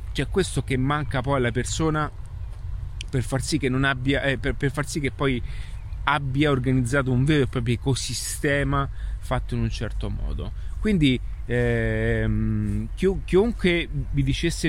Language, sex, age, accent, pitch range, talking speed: Italian, male, 30-49, native, 115-145 Hz, 155 wpm